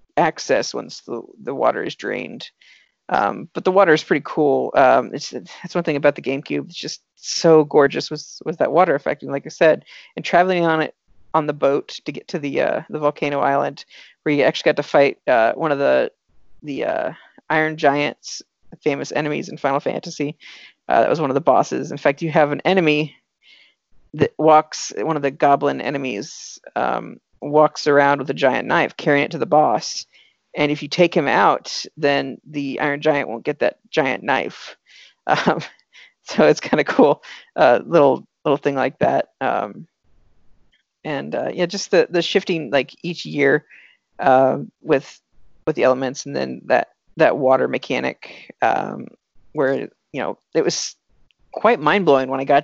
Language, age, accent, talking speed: English, 40-59, American, 185 wpm